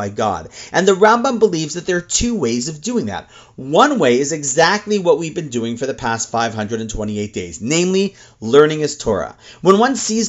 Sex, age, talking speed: male, 30-49, 190 wpm